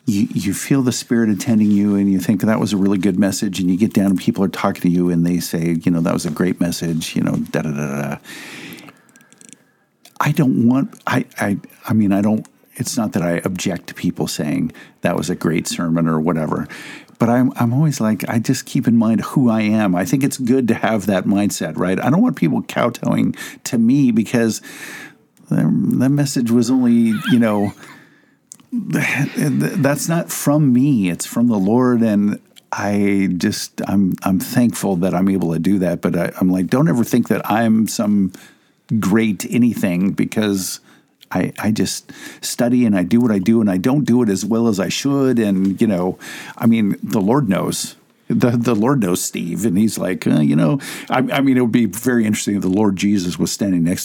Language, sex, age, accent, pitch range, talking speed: English, male, 50-69, American, 95-125 Hz, 205 wpm